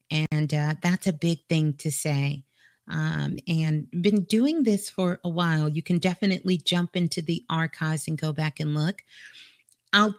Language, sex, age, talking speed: English, female, 40-59, 170 wpm